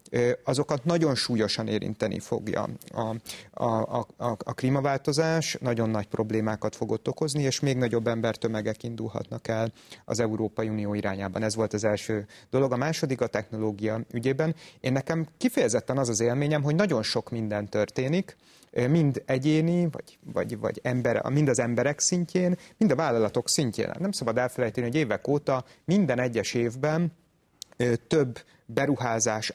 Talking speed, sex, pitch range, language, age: 145 wpm, male, 115-150 Hz, Hungarian, 30-49